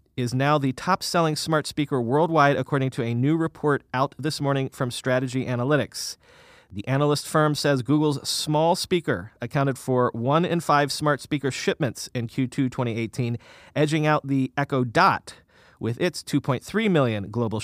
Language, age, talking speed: English, 30-49, 160 wpm